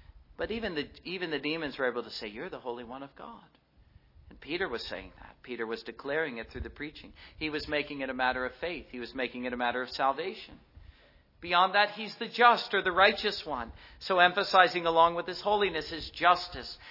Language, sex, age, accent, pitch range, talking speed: English, male, 50-69, American, 125-185 Hz, 215 wpm